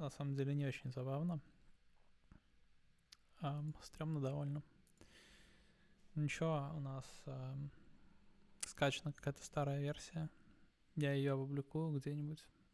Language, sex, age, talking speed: Russian, male, 20-39, 100 wpm